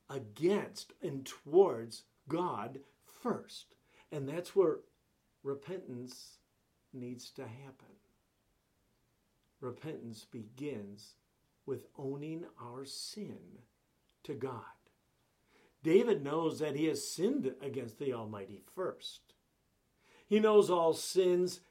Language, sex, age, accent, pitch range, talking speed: English, male, 50-69, American, 120-170 Hz, 95 wpm